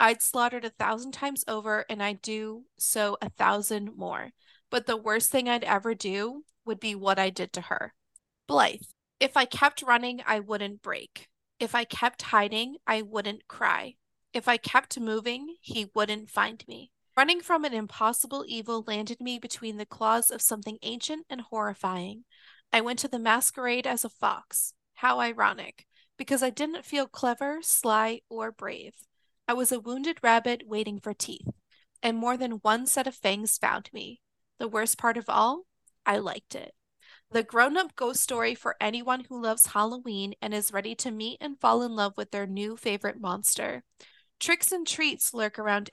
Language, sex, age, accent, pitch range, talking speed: English, female, 20-39, American, 215-250 Hz, 180 wpm